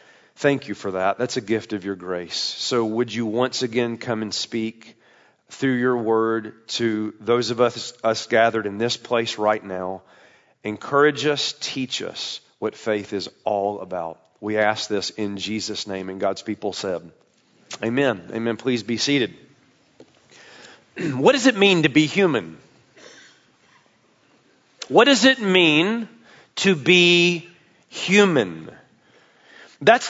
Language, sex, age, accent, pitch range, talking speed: English, male, 40-59, American, 115-180 Hz, 140 wpm